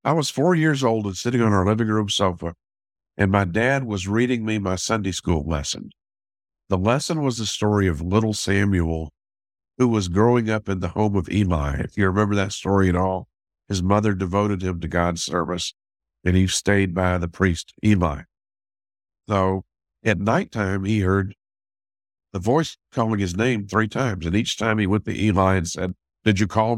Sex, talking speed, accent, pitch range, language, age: male, 190 wpm, American, 90-120 Hz, English, 50-69